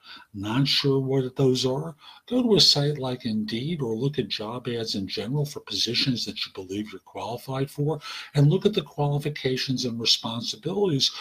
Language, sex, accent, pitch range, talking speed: English, male, American, 110-140 Hz, 175 wpm